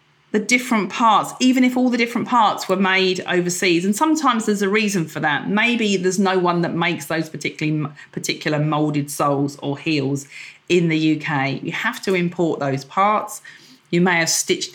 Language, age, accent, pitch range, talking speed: English, 40-59, British, 150-205 Hz, 185 wpm